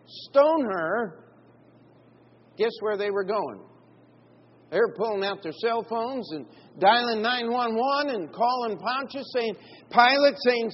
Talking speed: 130 wpm